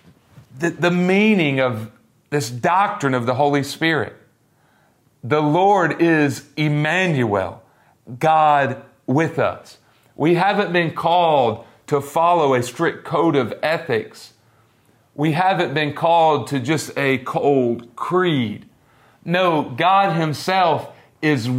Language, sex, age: English, male, 40-59